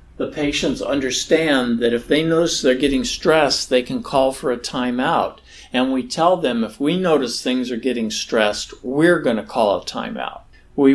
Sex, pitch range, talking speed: male, 125-170 Hz, 185 wpm